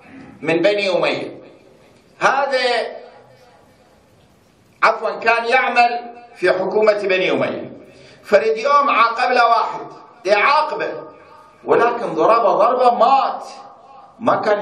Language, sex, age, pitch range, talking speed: Arabic, male, 50-69, 140-225 Hz, 95 wpm